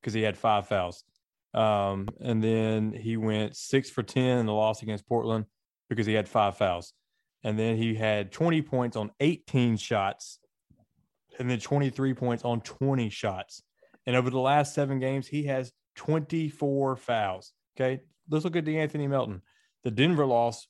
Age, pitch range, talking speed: 30-49, 105-135 Hz, 170 wpm